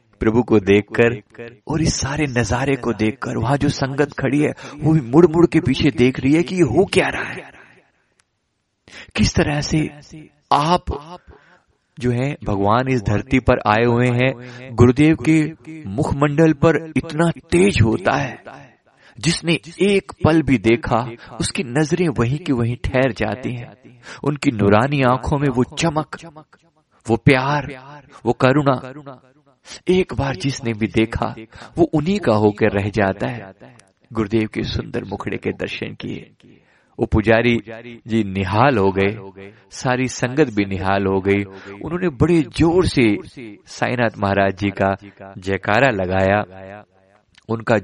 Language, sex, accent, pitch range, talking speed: Hindi, male, native, 105-145 Hz, 145 wpm